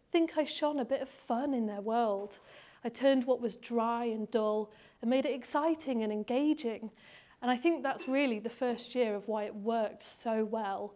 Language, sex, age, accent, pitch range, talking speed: English, female, 30-49, British, 215-265 Hz, 205 wpm